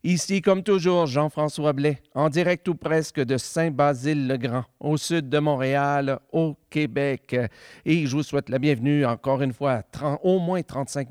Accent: Canadian